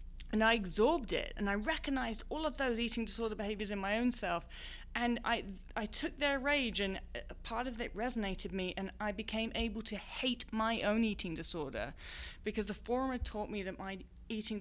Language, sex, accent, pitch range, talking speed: English, female, British, 175-230 Hz, 200 wpm